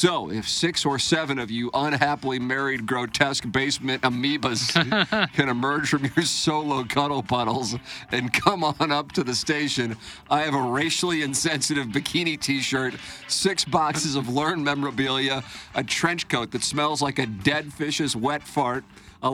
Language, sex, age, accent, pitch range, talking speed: English, male, 40-59, American, 130-150 Hz, 155 wpm